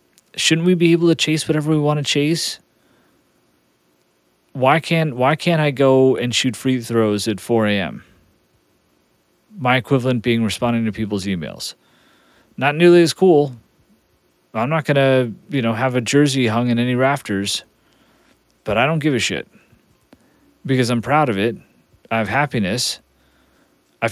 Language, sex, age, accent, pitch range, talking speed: English, male, 30-49, American, 105-135 Hz, 155 wpm